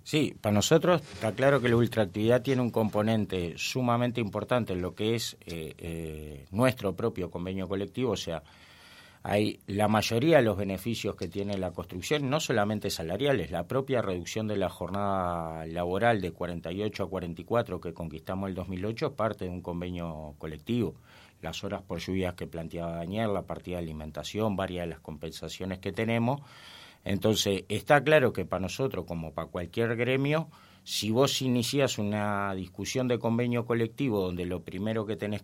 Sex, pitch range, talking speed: male, 90-115 Hz, 170 wpm